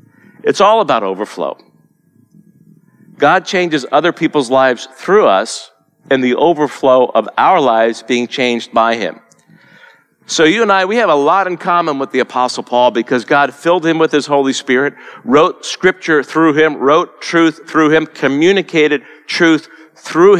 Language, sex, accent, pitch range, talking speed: English, male, American, 125-155 Hz, 160 wpm